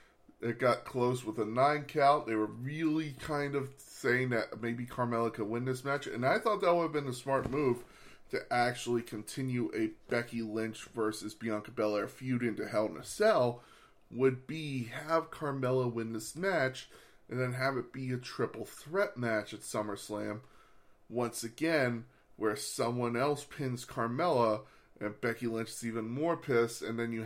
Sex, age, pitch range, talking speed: male, 20-39, 110-130 Hz, 175 wpm